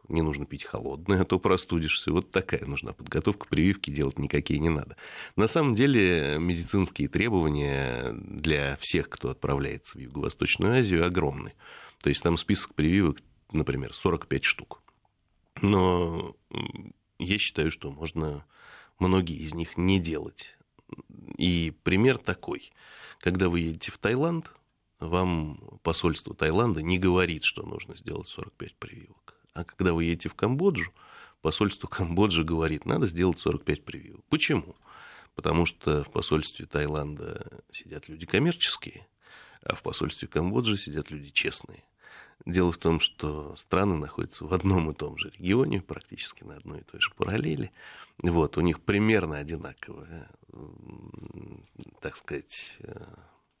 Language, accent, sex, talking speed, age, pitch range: Russian, native, male, 135 wpm, 30-49, 75-95 Hz